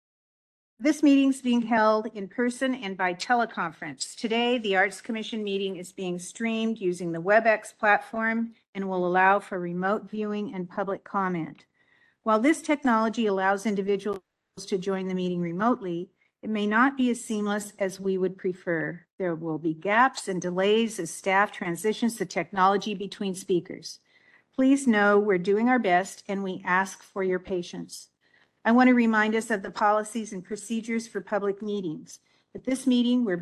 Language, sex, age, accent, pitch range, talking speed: English, female, 50-69, American, 185-225 Hz, 165 wpm